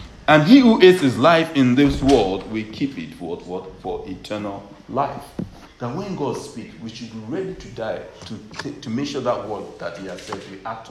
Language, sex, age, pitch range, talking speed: English, male, 50-69, 105-145 Hz, 215 wpm